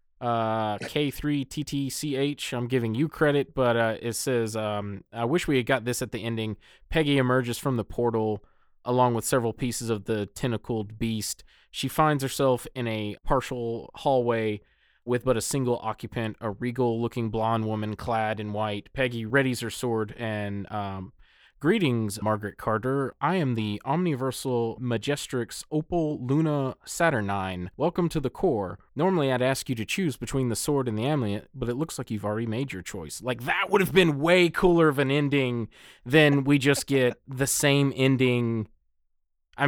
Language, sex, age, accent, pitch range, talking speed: English, male, 20-39, American, 110-135 Hz, 170 wpm